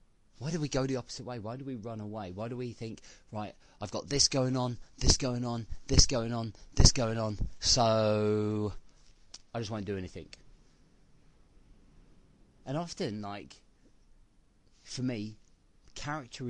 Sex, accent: male, British